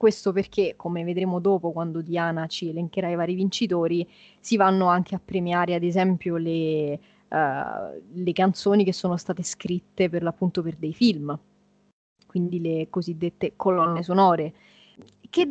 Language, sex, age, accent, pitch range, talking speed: Italian, female, 20-39, native, 175-210 Hz, 145 wpm